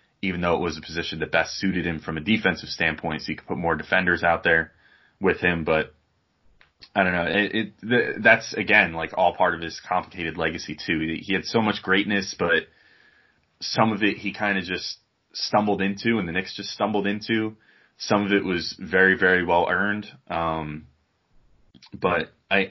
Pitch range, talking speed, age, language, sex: 80-100 Hz, 185 wpm, 20-39, English, male